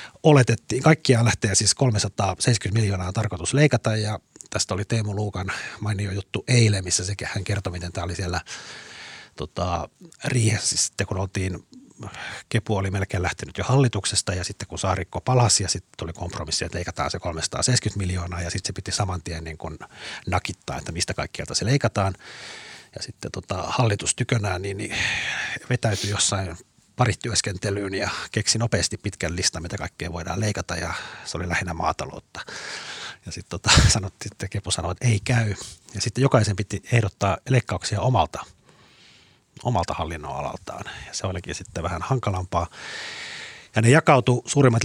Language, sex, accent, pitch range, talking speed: Finnish, male, native, 95-115 Hz, 155 wpm